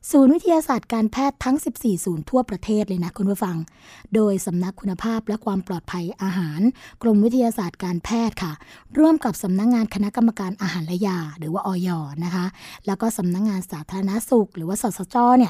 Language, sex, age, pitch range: Thai, female, 20-39, 195-245 Hz